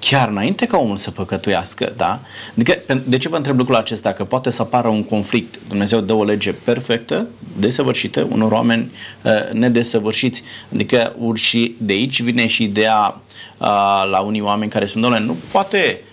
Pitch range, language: 105-130 Hz, Romanian